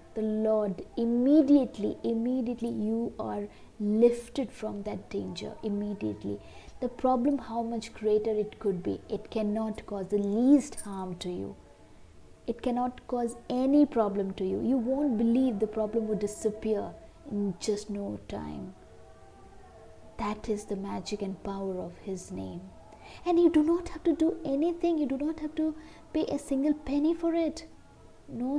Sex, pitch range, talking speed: female, 200-250 Hz, 155 wpm